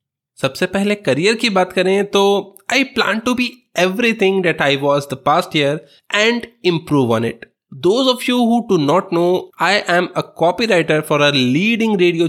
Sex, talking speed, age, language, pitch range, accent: male, 165 wpm, 20-39, Hindi, 145-200 Hz, native